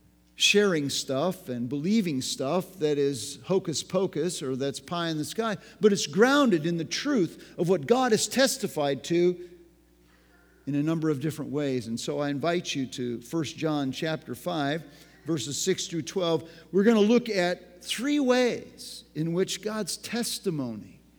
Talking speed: 160 wpm